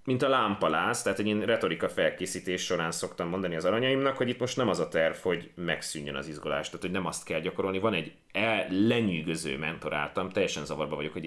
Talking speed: 200 wpm